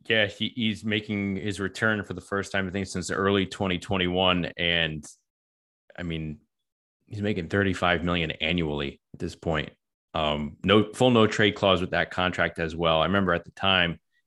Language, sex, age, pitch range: English, male, 20-39, 85-100 Hz